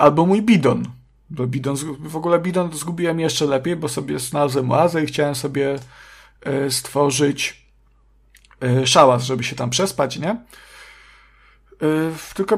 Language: Polish